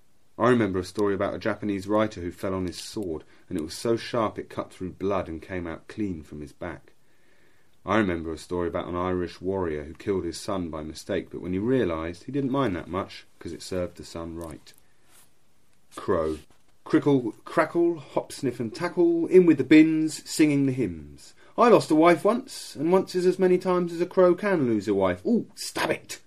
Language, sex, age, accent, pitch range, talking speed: English, male, 30-49, British, 95-130 Hz, 210 wpm